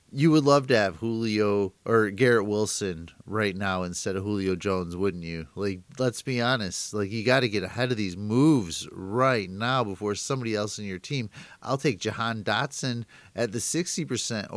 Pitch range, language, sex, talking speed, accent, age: 105-135 Hz, English, male, 185 wpm, American, 30-49